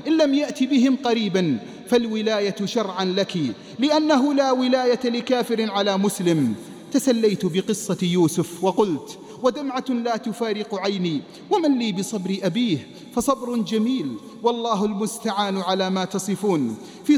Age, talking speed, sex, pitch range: 40-59, 120 wpm, male, 205-270 Hz